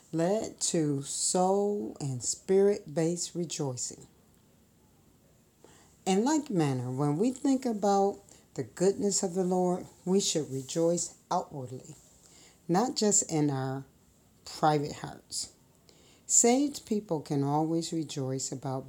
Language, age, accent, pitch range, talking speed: English, 50-69, American, 140-195 Hz, 110 wpm